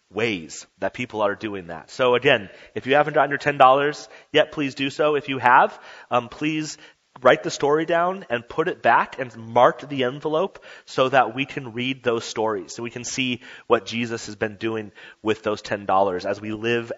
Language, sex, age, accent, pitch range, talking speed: English, male, 30-49, American, 110-135 Hz, 200 wpm